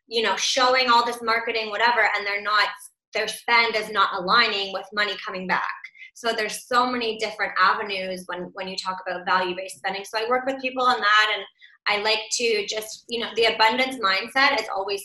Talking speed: 195 wpm